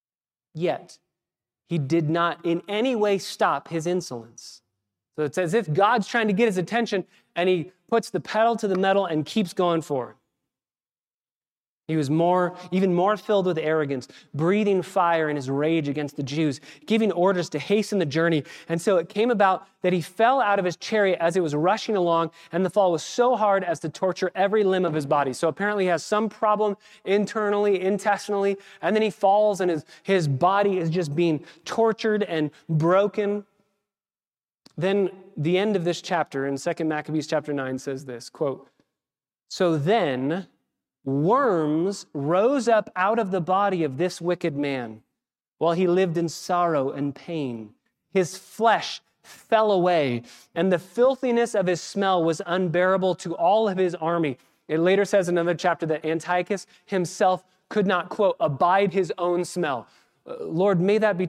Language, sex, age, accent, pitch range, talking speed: English, male, 30-49, American, 155-200 Hz, 175 wpm